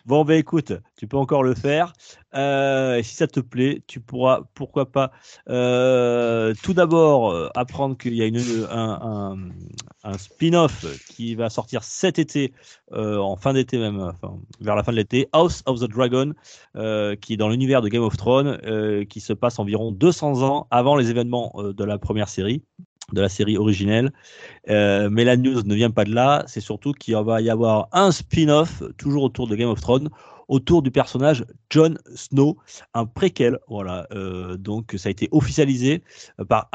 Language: French